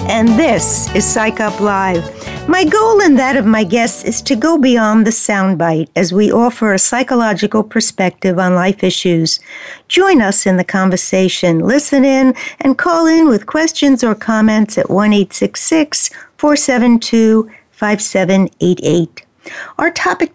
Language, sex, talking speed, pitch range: English, female, 135 wpm, 190-245 Hz